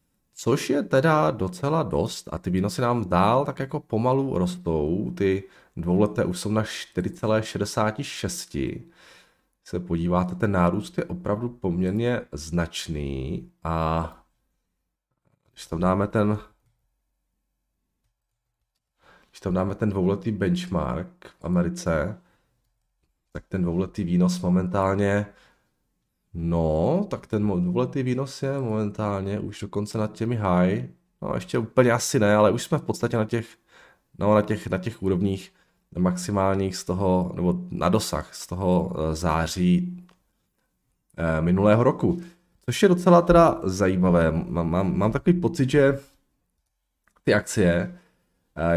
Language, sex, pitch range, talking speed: Czech, male, 90-120 Hz, 120 wpm